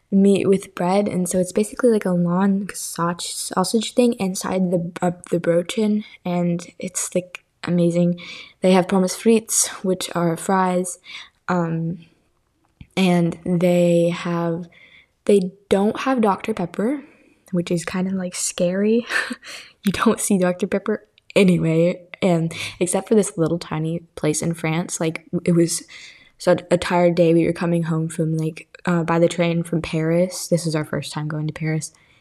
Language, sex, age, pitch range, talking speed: English, female, 10-29, 170-195 Hz, 160 wpm